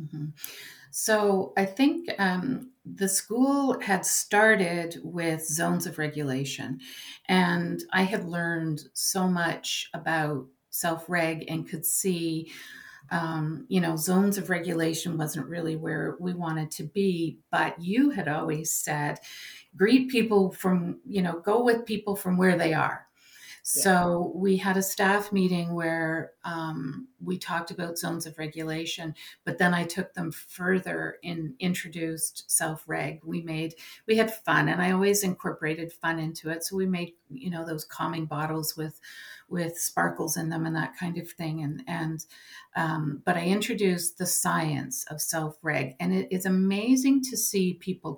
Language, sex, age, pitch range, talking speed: English, female, 50-69, 160-195 Hz, 155 wpm